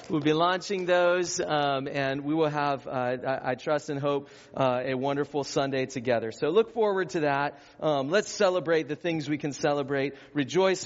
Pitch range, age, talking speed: 135-185 Hz, 40-59, 190 wpm